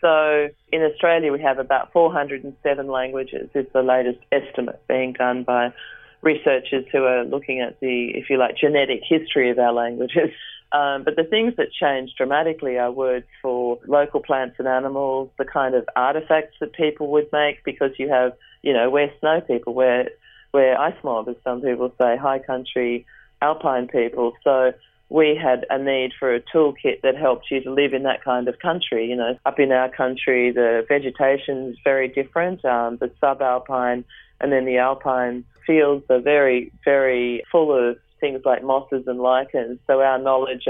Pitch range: 125-145 Hz